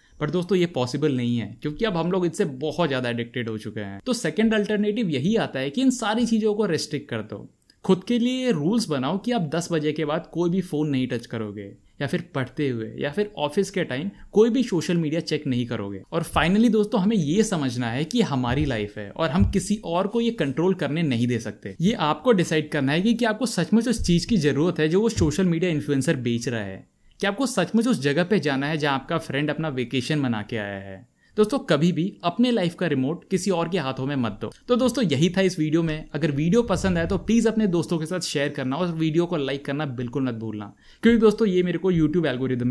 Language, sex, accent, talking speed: Hindi, male, native, 245 wpm